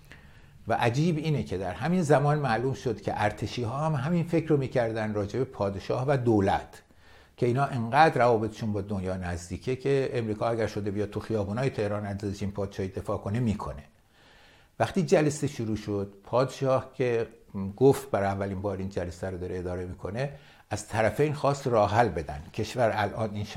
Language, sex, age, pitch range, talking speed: English, male, 60-79, 95-125 Hz, 175 wpm